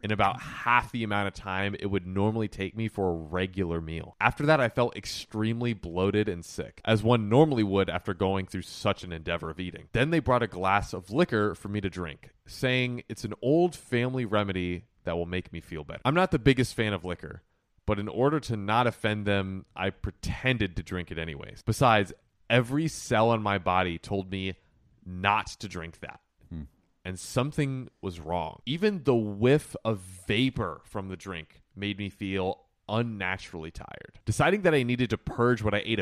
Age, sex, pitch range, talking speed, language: 30-49, male, 95-125 Hz, 195 wpm, English